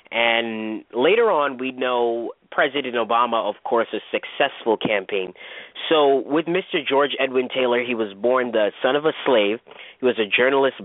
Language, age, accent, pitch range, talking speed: English, 30-49, American, 105-125 Hz, 165 wpm